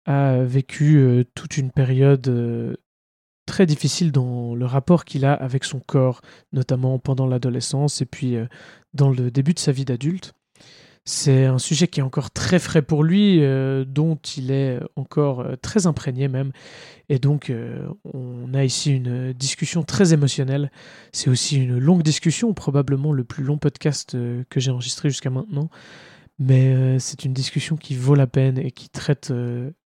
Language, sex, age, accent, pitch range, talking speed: French, male, 20-39, French, 125-145 Hz, 175 wpm